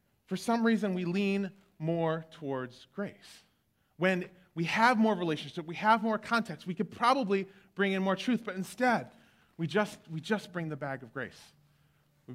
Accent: American